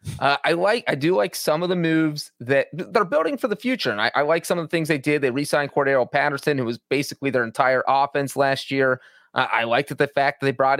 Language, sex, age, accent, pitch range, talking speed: English, male, 30-49, American, 135-170 Hz, 255 wpm